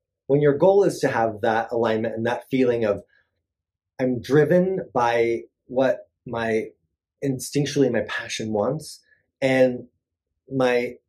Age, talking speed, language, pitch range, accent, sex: 30-49, 125 wpm, English, 90-130 Hz, American, male